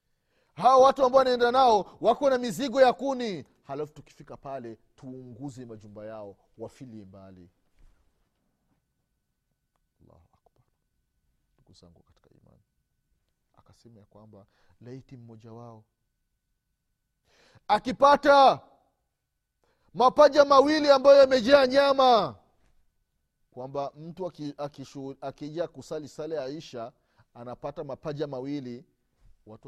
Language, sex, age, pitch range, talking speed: Swahili, male, 40-59, 95-145 Hz, 85 wpm